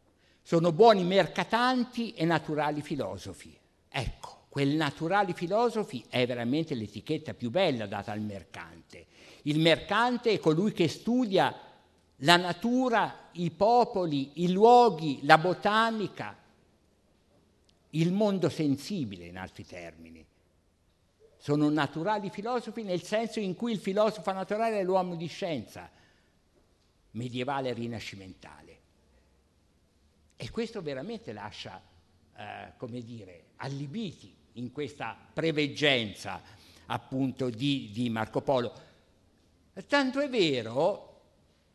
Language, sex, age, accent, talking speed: Italian, male, 60-79, native, 105 wpm